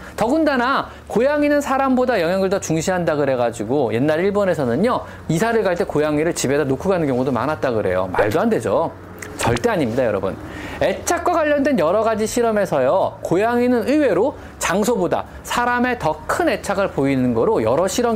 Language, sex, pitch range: Korean, male, 150-245 Hz